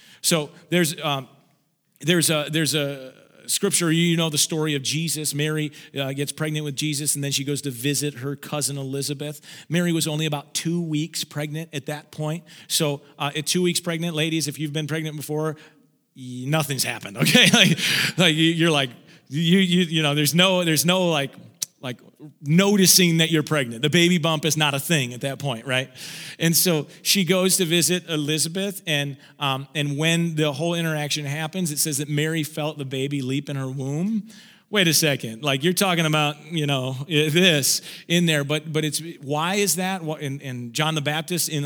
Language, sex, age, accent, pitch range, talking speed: English, male, 40-59, American, 145-165 Hz, 195 wpm